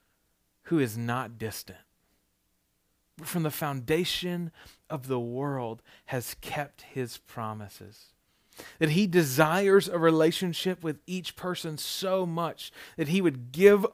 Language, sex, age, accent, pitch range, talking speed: English, male, 40-59, American, 150-200 Hz, 125 wpm